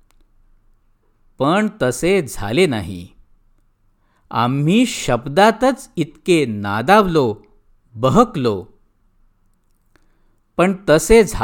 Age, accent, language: 50-69, native, Marathi